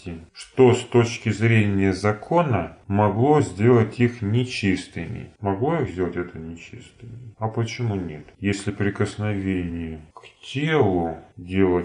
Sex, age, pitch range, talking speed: male, 30-49, 95-130 Hz, 110 wpm